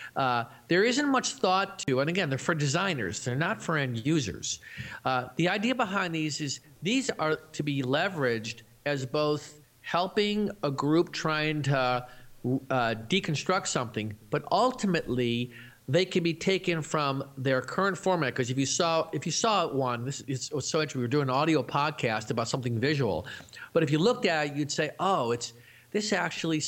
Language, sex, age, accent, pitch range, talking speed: English, male, 50-69, American, 125-170 Hz, 185 wpm